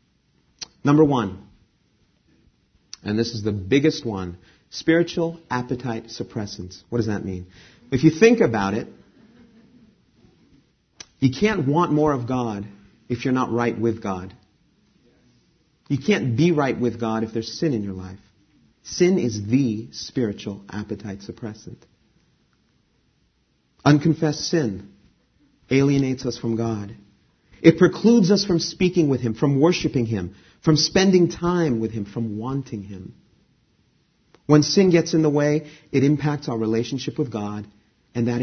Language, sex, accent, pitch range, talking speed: English, male, American, 105-155 Hz, 135 wpm